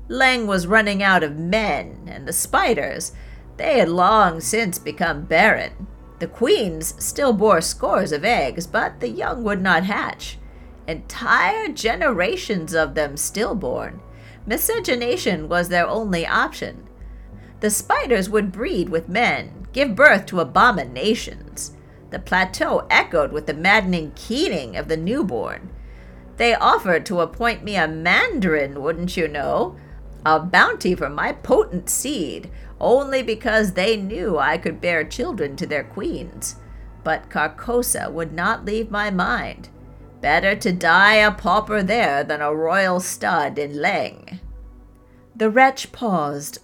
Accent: American